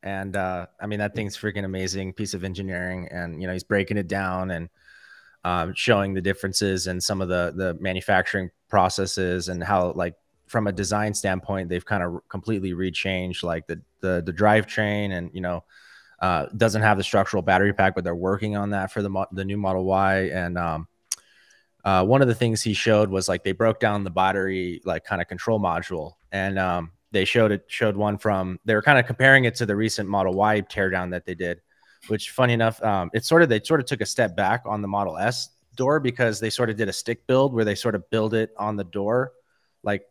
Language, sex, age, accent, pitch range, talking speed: English, male, 20-39, American, 95-110 Hz, 225 wpm